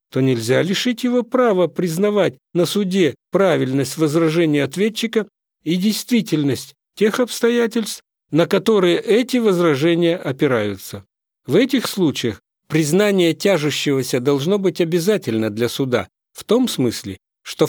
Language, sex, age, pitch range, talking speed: Russian, male, 50-69, 130-185 Hz, 115 wpm